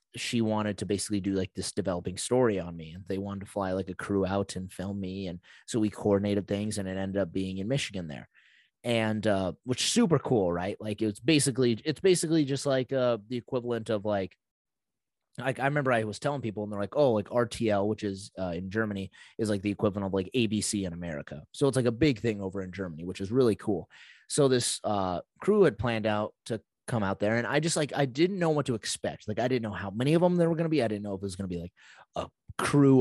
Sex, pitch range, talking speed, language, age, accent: male, 100-130 Hz, 250 wpm, English, 30-49, American